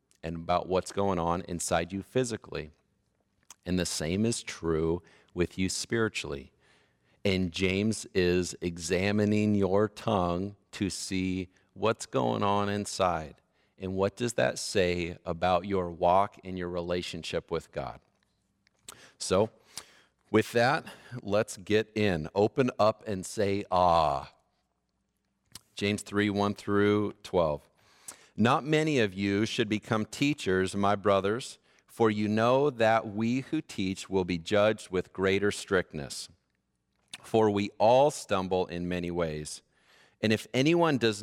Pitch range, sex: 90-110 Hz, male